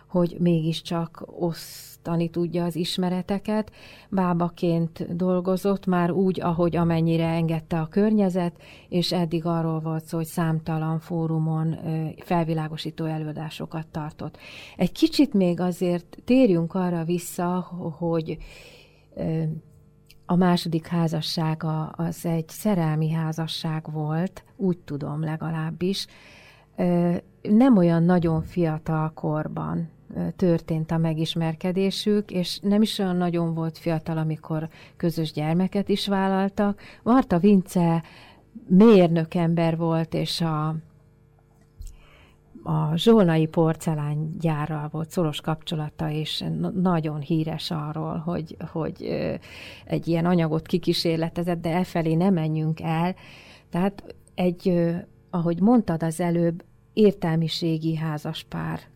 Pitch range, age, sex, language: 160-180 Hz, 30-49, female, Hungarian